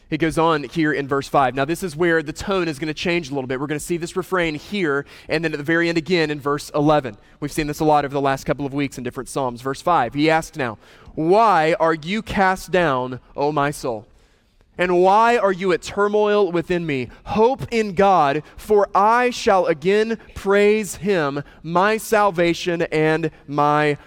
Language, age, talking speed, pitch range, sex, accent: English, 20-39, 210 wpm, 155-215 Hz, male, American